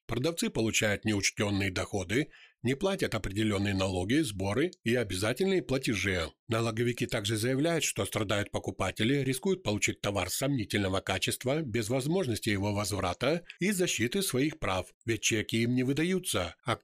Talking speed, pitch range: 135 wpm, 100-130 Hz